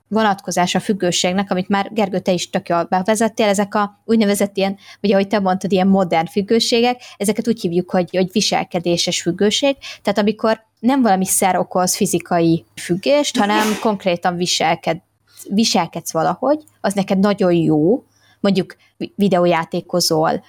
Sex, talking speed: female, 140 wpm